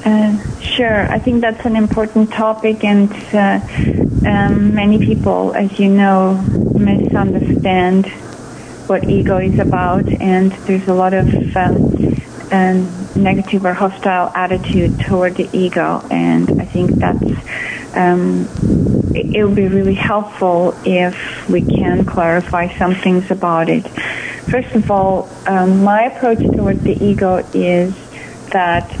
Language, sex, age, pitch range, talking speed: English, female, 30-49, 175-200 Hz, 130 wpm